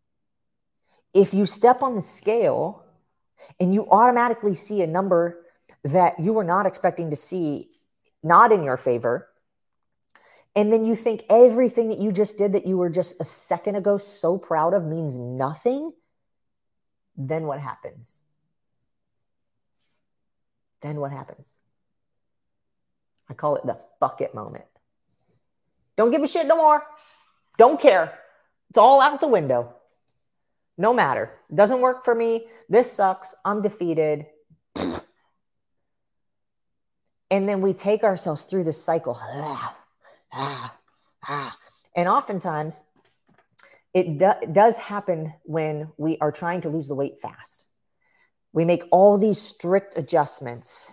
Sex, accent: female, American